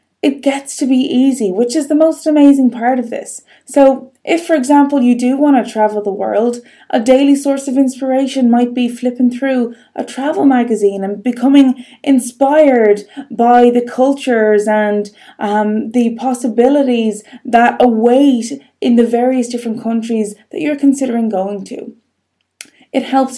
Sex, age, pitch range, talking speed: female, 20-39, 215-270 Hz, 155 wpm